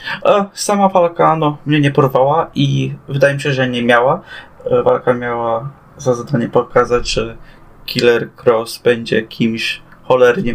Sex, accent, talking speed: male, native, 135 wpm